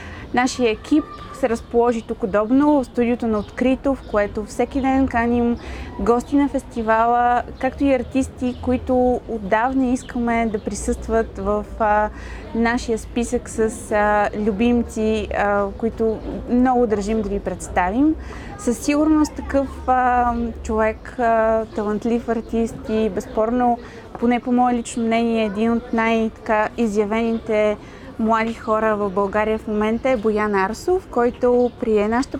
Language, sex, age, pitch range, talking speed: Bulgarian, female, 20-39, 215-255 Hz, 130 wpm